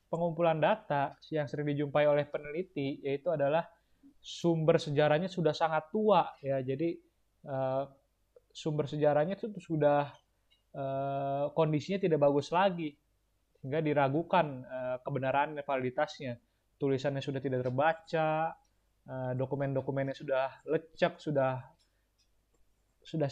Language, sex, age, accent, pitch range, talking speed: Indonesian, male, 20-39, native, 135-160 Hz, 105 wpm